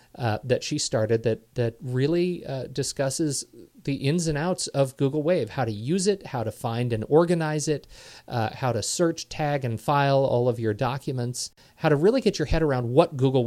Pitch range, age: 115-140 Hz, 40-59